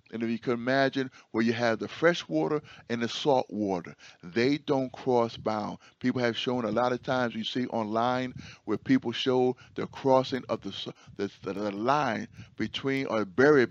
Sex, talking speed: male, 185 wpm